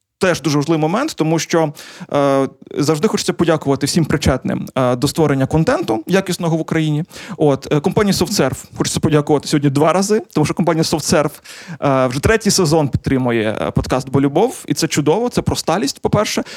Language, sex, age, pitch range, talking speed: Ukrainian, male, 20-39, 145-180 Hz, 165 wpm